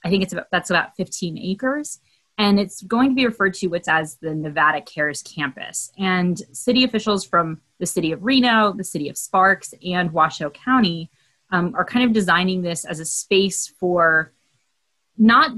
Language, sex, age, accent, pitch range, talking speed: English, female, 20-39, American, 165-210 Hz, 180 wpm